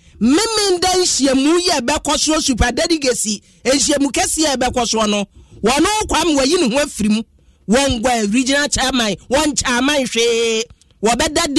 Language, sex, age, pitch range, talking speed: English, male, 30-49, 230-305 Hz, 155 wpm